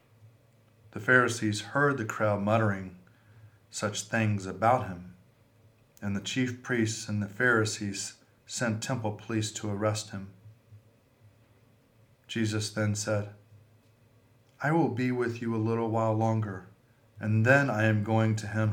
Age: 40-59